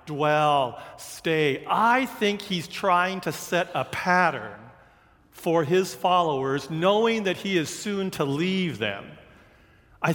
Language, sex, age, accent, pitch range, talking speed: English, male, 50-69, American, 140-190 Hz, 130 wpm